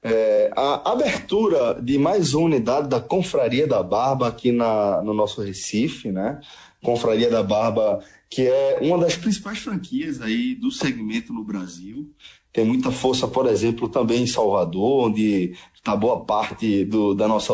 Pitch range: 110-160 Hz